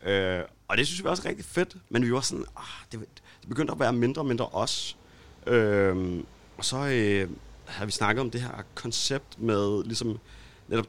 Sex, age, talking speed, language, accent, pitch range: male, 30-49, 200 wpm, Danish, native, 95-120 Hz